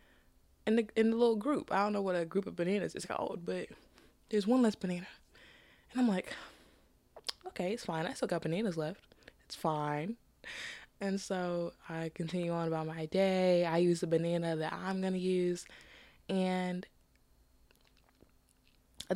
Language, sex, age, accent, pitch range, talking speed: English, female, 20-39, American, 170-205 Hz, 160 wpm